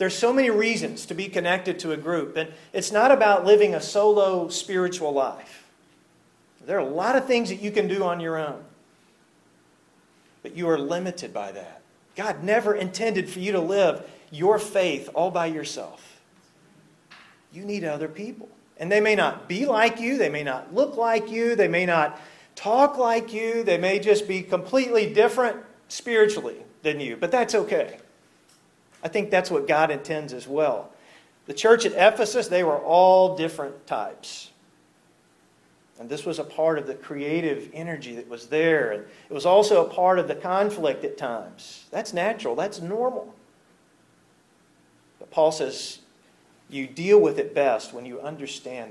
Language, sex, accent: English, male, American